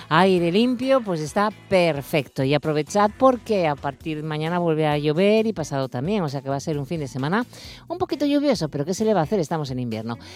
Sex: female